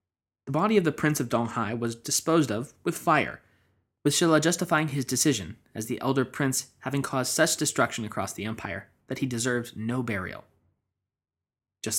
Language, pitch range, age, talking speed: English, 110-140 Hz, 20-39, 170 wpm